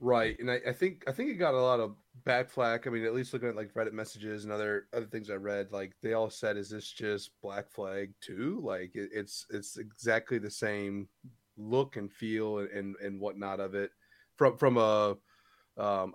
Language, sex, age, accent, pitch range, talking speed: English, male, 30-49, American, 100-120 Hz, 215 wpm